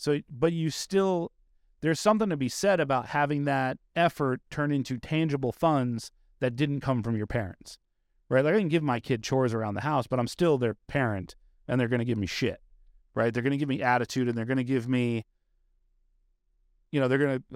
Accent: American